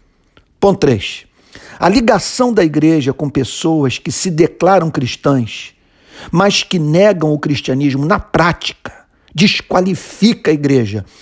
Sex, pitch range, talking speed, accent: male, 135-180 Hz, 110 wpm, Brazilian